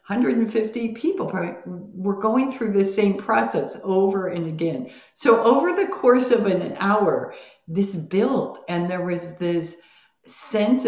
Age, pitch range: 50-69, 165-220 Hz